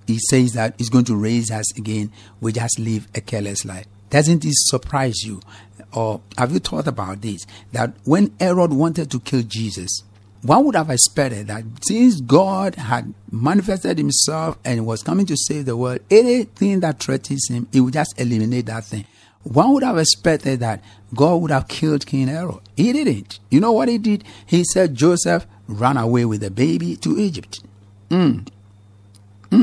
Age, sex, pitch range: 60-79, male, 105-150 Hz